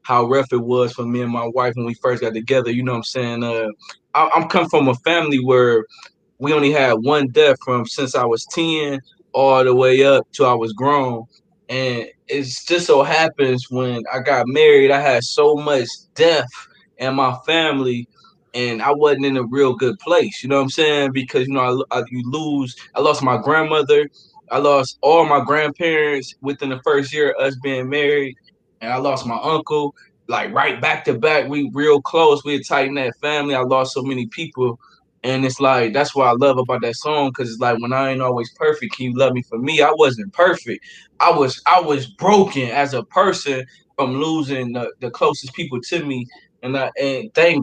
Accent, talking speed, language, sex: American, 210 wpm, English, male